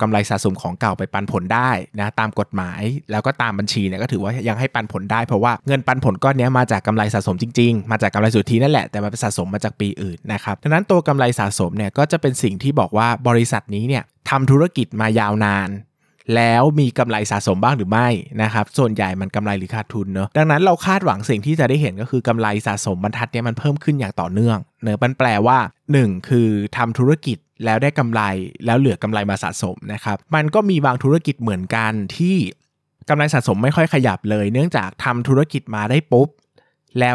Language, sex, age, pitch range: Thai, male, 20-39, 105-135 Hz